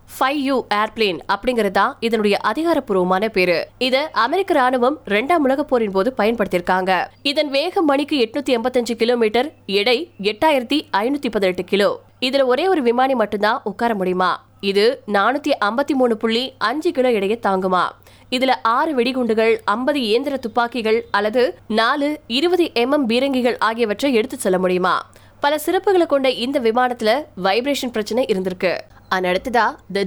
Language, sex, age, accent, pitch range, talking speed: Tamil, female, 20-39, native, 210-275 Hz, 60 wpm